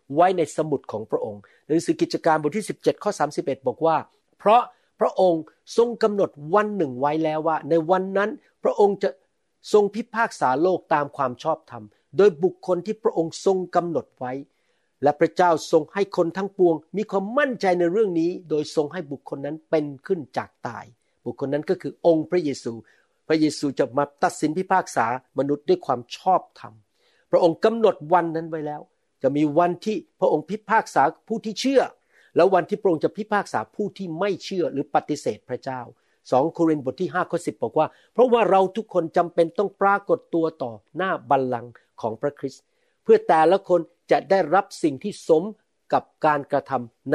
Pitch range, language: 145-195 Hz, Thai